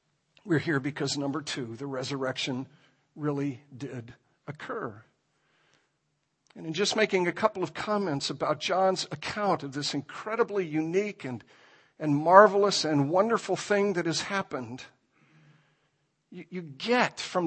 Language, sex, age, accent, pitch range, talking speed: English, male, 60-79, American, 155-205 Hz, 130 wpm